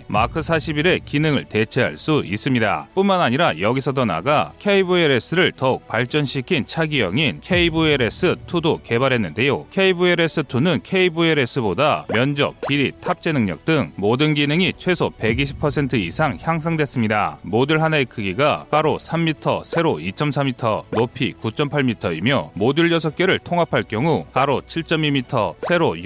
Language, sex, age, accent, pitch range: Korean, male, 30-49, native, 125-160 Hz